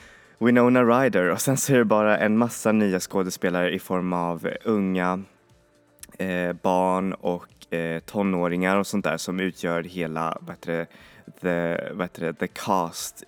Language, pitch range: Swedish, 90-105 Hz